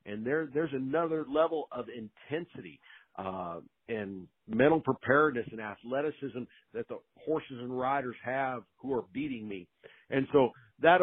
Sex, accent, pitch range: male, American, 115-145 Hz